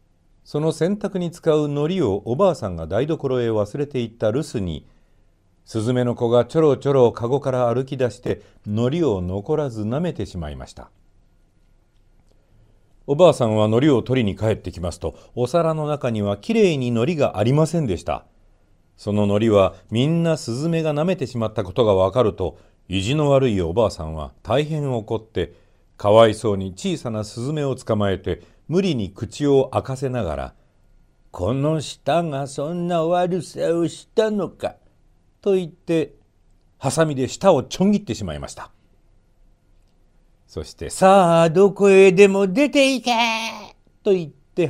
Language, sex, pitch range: Japanese, male, 100-155 Hz